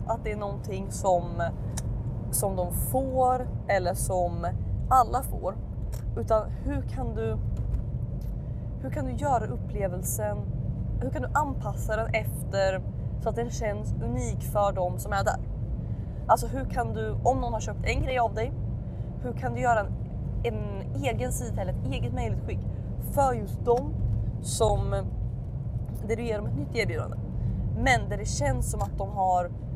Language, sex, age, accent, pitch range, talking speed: Swedish, female, 20-39, native, 110-125 Hz, 160 wpm